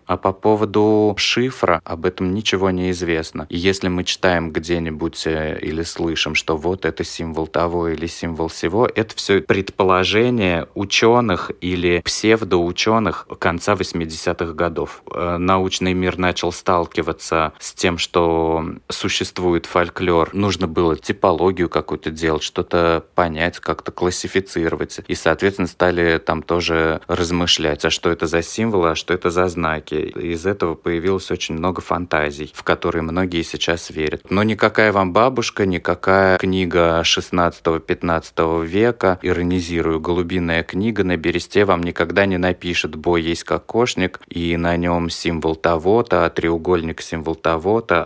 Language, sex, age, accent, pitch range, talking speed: Russian, male, 20-39, native, 85-95 Hz, 130 wpm